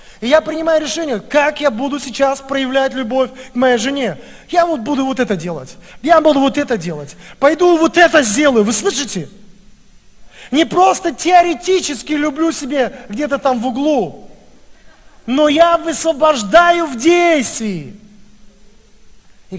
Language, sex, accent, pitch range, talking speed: Russian, male, native, 180-270 Hz, 140 wpm